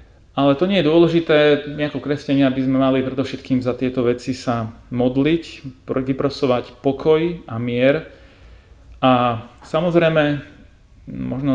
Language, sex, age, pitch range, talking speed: Slovak, male, 40-59, 115-145 Hz, 120 wpm